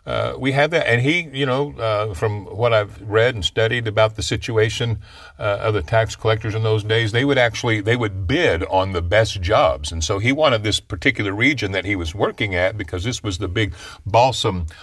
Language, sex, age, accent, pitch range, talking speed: English, male, 50-69, American, 100-125 Hz, 225 wpm